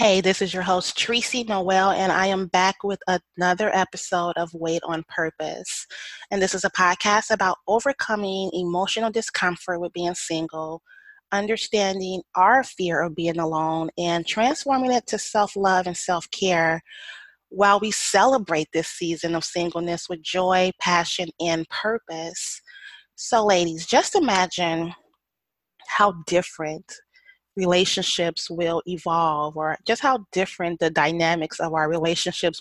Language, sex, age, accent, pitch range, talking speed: English, female, 30-49, American, 170-210 Hz, 135 wpm